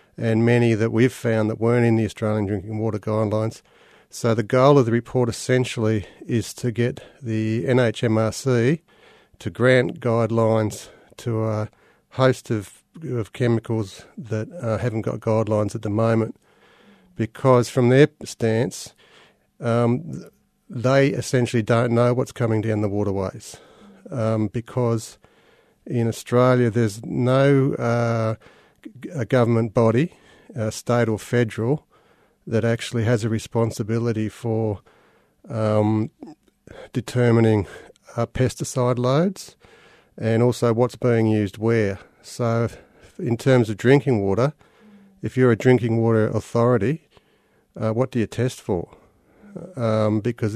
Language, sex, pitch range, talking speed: English, male, 110-125 Hz, 130 wpm